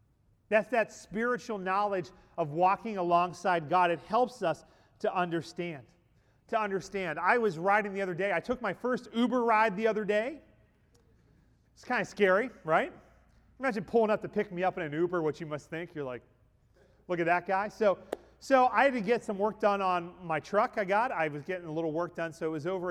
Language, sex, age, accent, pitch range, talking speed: English, male, 40-59, American, 165-210 Hz, 210 wpm